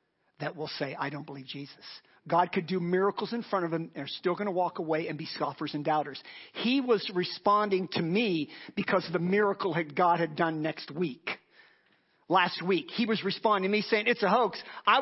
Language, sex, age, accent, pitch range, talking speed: English, male, 50-69, American, 170-235 Hz, 215 wpm